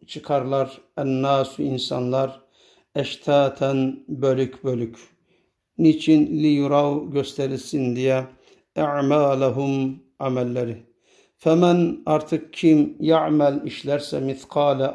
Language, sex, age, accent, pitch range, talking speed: Turkish, male, 60-79, native, 130-155 Hz, 80 wpm